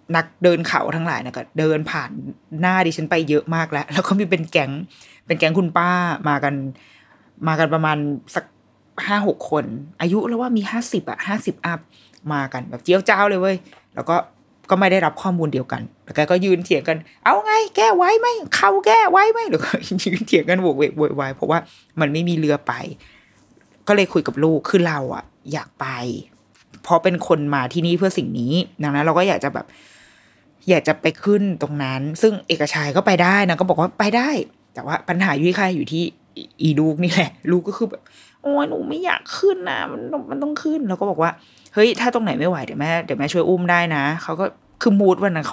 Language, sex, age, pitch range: Thai, female, 20-39, 150-195 Hz